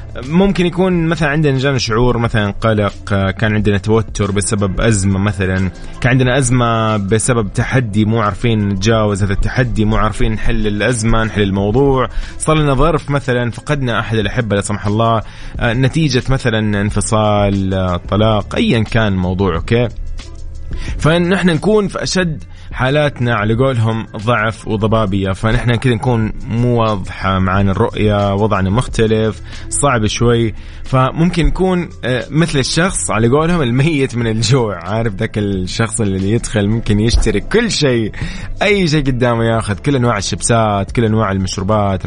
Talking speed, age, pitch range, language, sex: 140 wpm, 20-39, 100-130 Hz, Arabic, male